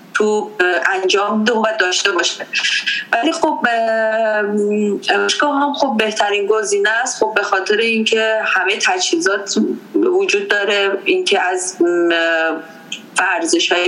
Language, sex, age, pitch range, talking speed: Persian, female, 30-49, 195-300 Hz, 110 wpm